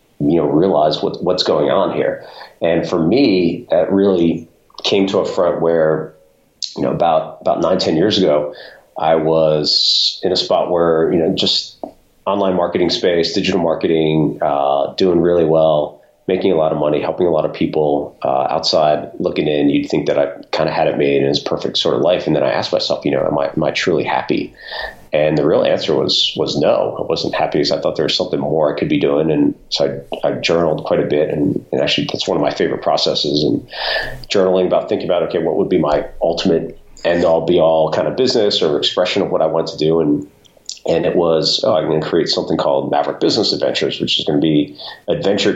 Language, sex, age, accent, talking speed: English, male, 40-59, American, 225 wpm